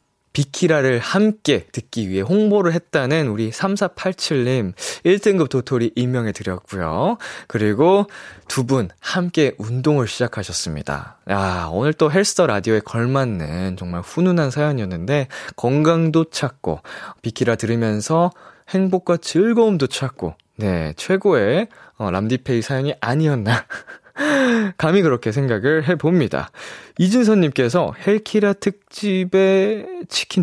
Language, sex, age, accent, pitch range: Korean, male, 20-39, native, 110-180 Hz